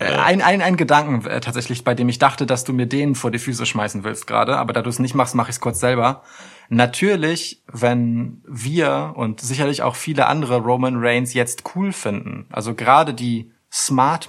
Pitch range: 115-140 Hz